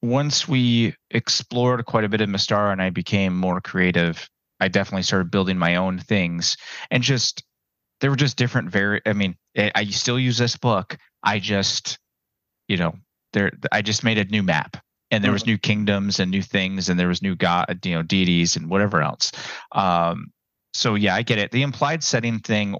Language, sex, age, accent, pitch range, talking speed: English, male, 30-49, American, 95-115 Hz, 200 wpm